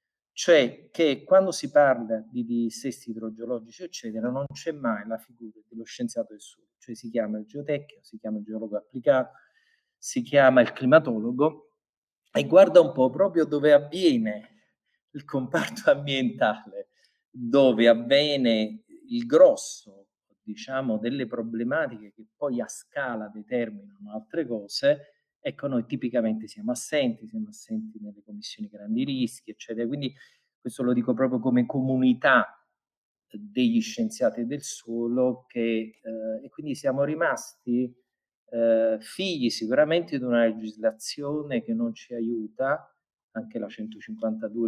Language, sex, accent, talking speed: Italian, male, native, 130 wpm